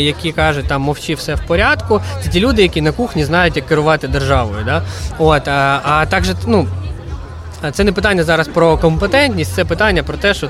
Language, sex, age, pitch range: Ukrainian, male, 20-39, 140-175 Hz